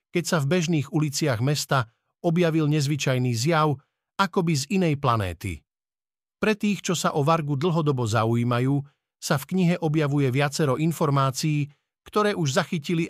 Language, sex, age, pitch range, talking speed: Slovak, male, 50-69, 130-160 Hz, 135 wpm